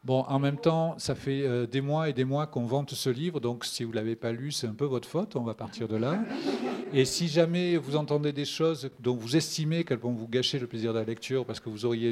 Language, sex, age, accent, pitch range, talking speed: French, male, 50-69, French, 115-140 Hz, 270 wpm